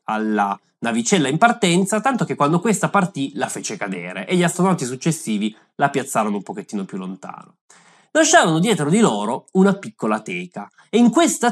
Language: Italian